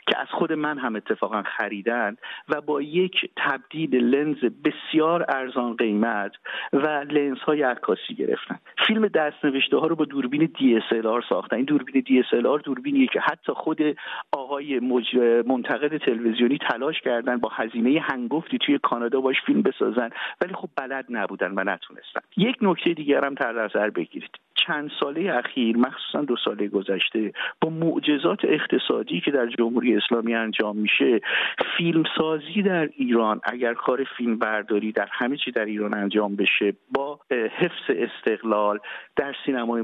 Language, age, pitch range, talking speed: Persian, 50-69, 115-155 Hz, 150 wpm